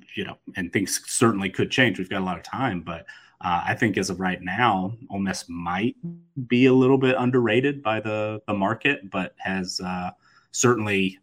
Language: English